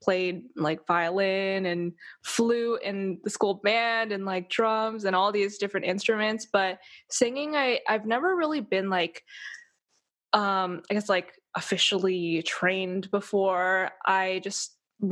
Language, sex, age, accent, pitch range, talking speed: English, female, 10-29, American, 180-225 Hz, 130 wpm